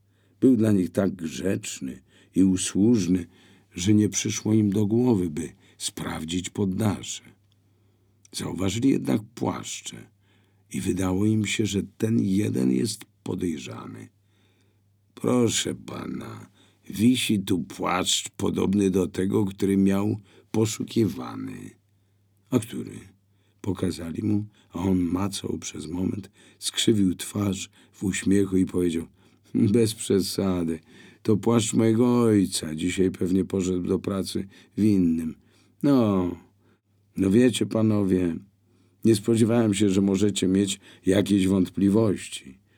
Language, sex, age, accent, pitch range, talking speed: Polish, male, 50-69, native, 95-110 Hz, 110 wpm